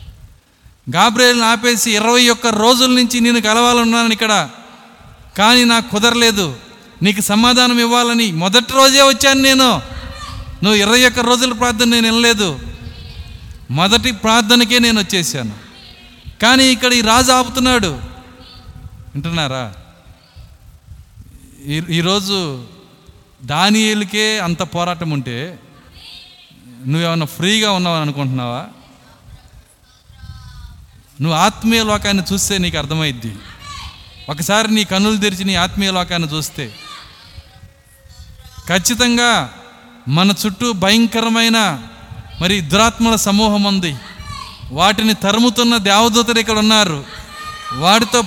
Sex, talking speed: male, 90 wpm